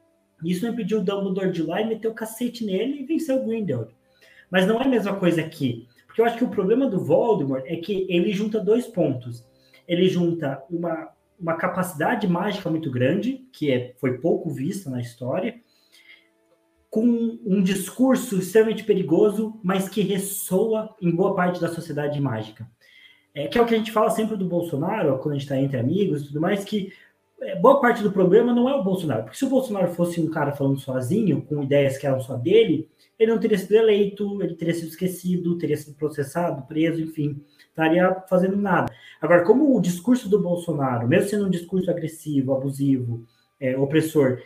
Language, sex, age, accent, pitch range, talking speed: Portuguese, male, 20-39, Brazilian, 140-205 Hz, 190 wpm